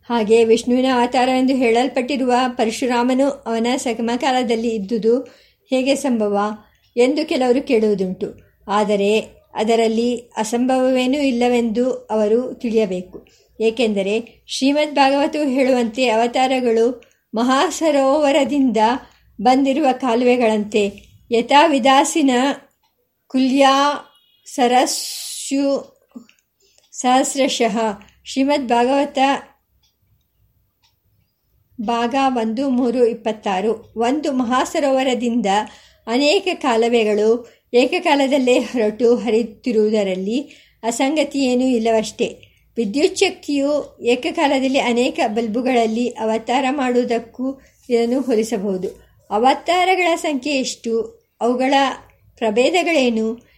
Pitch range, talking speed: 230-275 Hz, 65 wpm